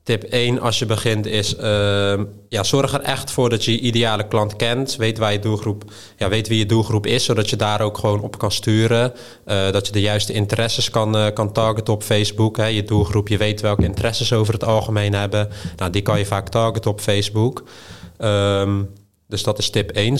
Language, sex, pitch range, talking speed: Dutch, male, 100-110 Hz, 220 wpm